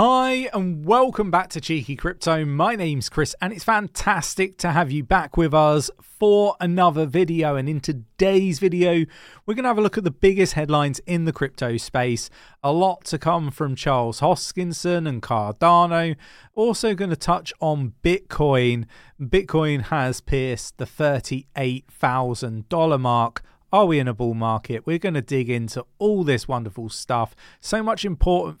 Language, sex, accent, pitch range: English, male, British, 120-175 Hz